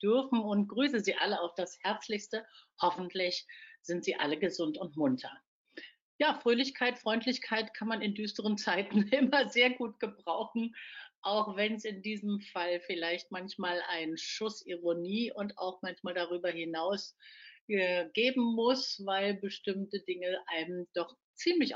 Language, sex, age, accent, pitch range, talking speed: German, female, 50-69, German, 180-230 Hz, 140 wpm